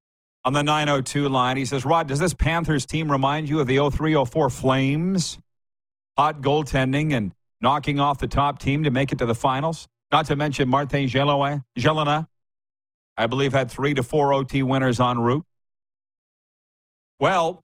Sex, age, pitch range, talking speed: male, 40-59, 105-140 Hz, 165 wpm